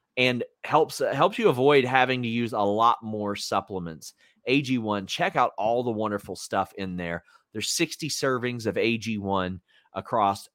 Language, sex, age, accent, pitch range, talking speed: English, male, 30-49, American, 100-125 Hz, 155 wpm